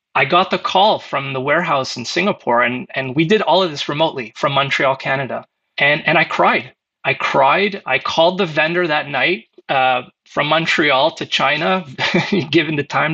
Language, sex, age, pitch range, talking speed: English, male, 30-49, 130-170 Hz, 185 wpm